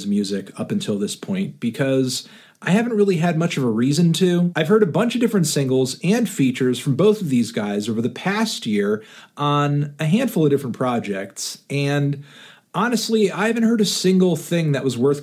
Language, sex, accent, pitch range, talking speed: English, male, American, 135-190 Hz, 195 wpm